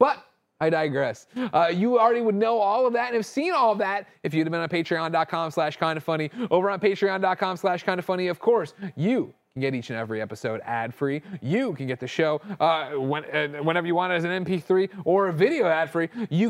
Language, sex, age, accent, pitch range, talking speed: English, male, 30-49, American, 155-225 Hz, 220 wpm